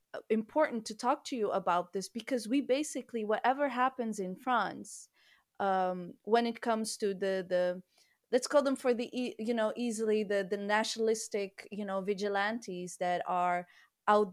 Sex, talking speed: female, 165 wpm